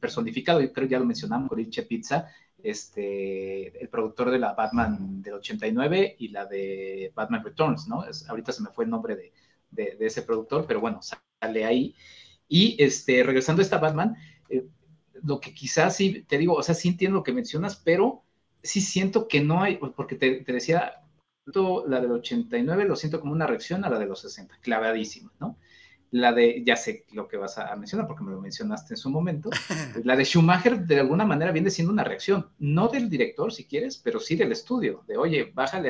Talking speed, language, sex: 205 wpm, Spanish, male